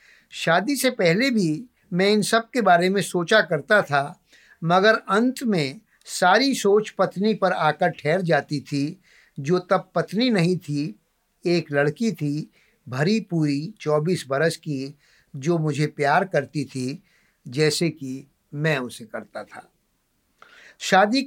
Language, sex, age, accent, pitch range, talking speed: Hindi, male, 50-69, native, 150-205 Hz, 140 wpm